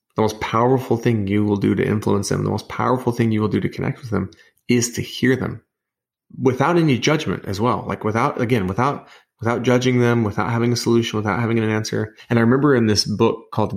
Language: English